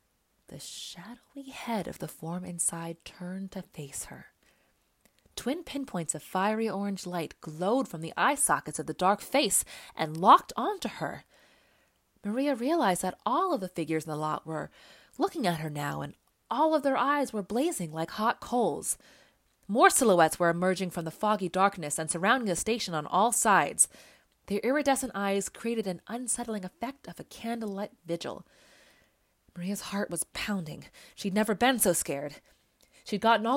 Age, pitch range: 20-39, 175-245 Hz